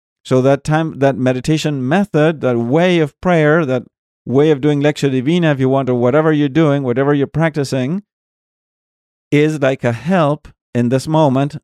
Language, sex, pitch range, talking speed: English, male, 125-165 Hz, 170 wpm